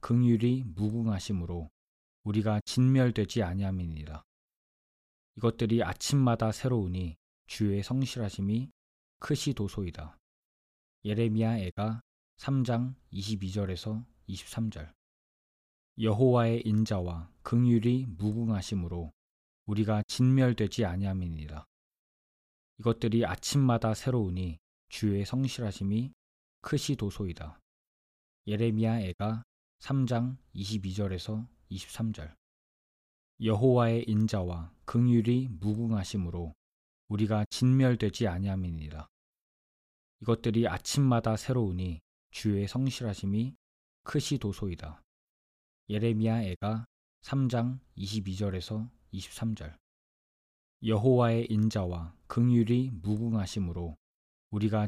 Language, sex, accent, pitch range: Korean, male, native, 85-115 Hz